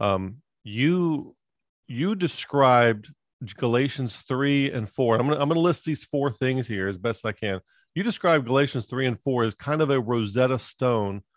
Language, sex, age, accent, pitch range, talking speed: English, male, 40-59, American, 120-150 Hz, 180 wpm